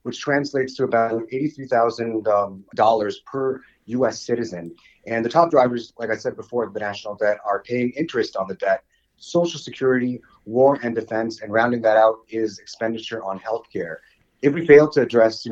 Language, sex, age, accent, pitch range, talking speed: English, male, 30-49, American, 100-120 Hz, 175 wpm